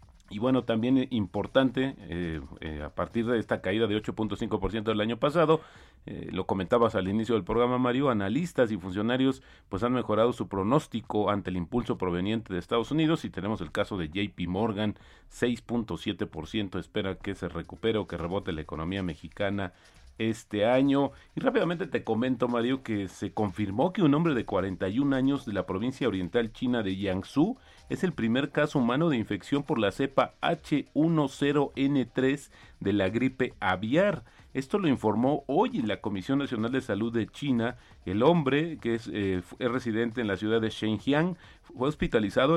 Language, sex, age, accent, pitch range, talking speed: Spanish, male, 40-59, Mexican, 95-130 Hz, 170 wpm